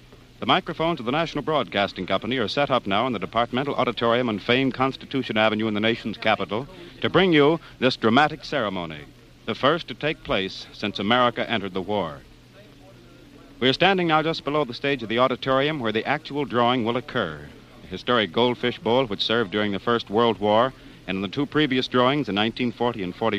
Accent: American